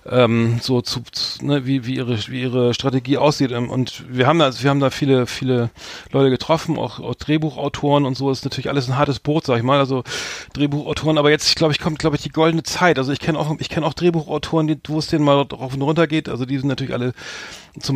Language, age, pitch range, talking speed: German, 40-59, 125-145 Hz, 245 wpm